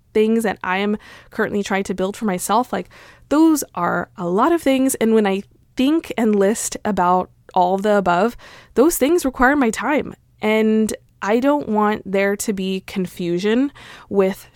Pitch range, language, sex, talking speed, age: 185-225 Hz, English, female, 170 wpm, 20-39